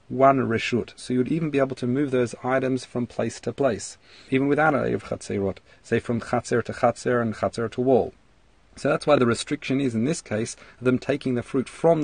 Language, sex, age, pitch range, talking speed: English, male, 40-59, 115-135 Hz, 210 wpm